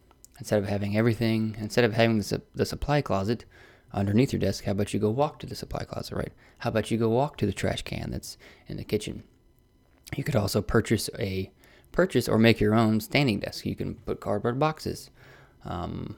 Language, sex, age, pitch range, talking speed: English, male, 20-39, 100-115 Hz, 210 wpm